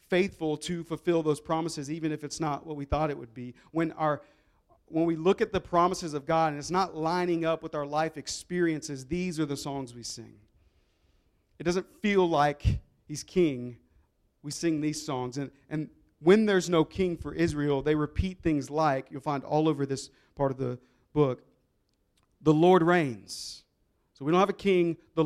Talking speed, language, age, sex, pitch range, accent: 190 wpm, English, 40-59, male, 140-170 Hz, American